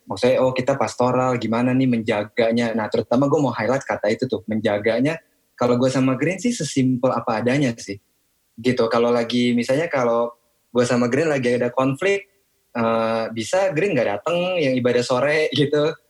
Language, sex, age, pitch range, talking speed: Indonesian, male, 20-39, 105-130 Hz, 170 wpm